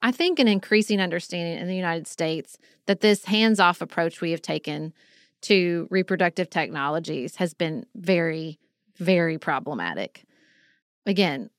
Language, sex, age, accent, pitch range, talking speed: English, female, 30-49, American, 190-245 Hz, 130 wpm